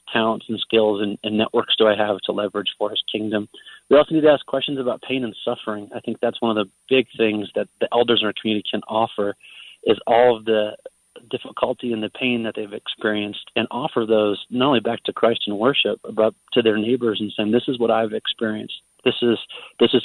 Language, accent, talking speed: English, American, 225 wpm